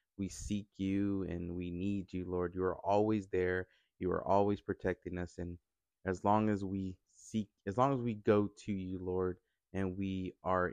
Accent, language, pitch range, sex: American, English, 90-100 Hz, male